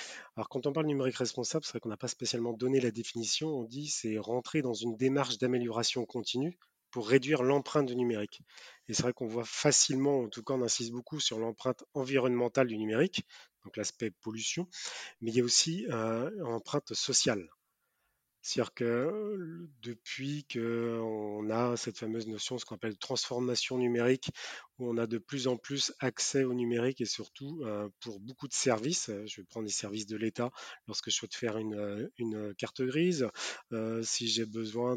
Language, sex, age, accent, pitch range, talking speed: French, male, 30-49, French, 115-135 Hz, 180 wpm